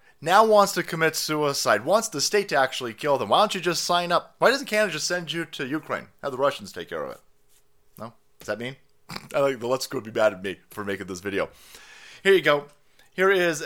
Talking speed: 240 wpm